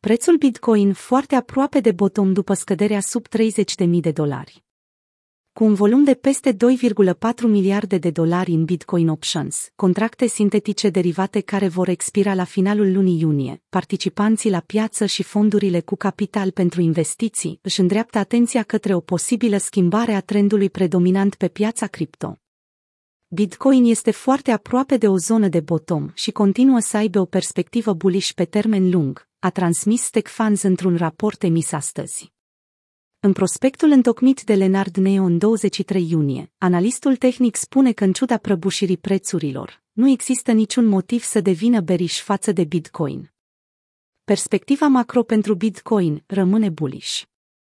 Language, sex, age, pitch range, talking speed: Romanian, female, 30-49, 180-225 Hz, 145 wpm